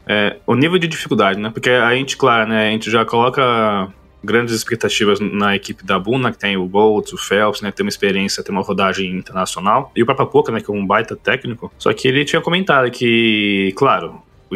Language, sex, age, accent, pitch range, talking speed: Portuguese, male, 20-39, Brazilian, 110-150 Hz, 220 wpm